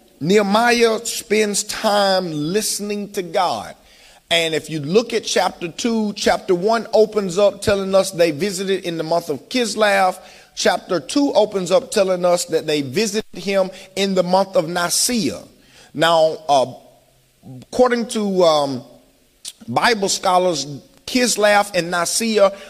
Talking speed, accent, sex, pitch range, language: 135 wpm, American, male, 180-220 Hz, English